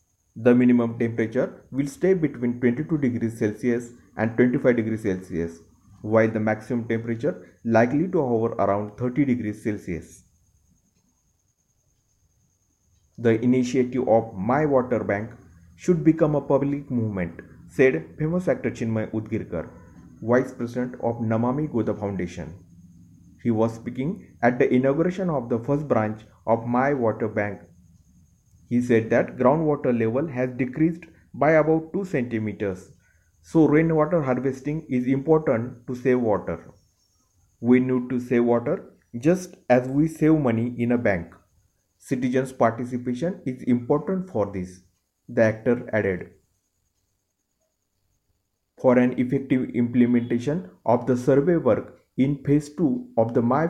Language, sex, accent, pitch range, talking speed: Marathi, male, native, 100-130 Hz, 130 wpm